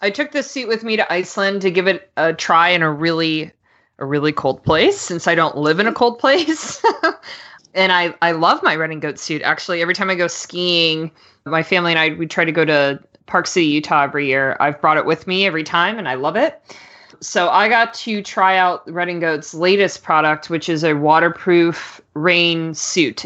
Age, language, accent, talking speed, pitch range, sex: 20-39, English, American, 220 wpm, 165-205 Hz, female